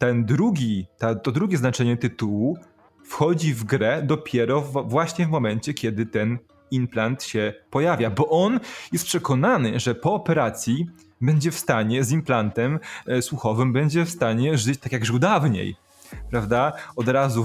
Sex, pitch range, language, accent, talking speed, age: male, 115-140 Hz, Polish, native, 145 wpm, 20-39